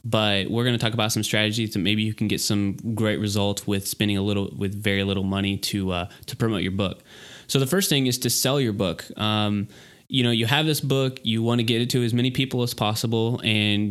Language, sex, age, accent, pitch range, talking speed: English, male, 20-39, American, 105-125 Hz, 250 wpm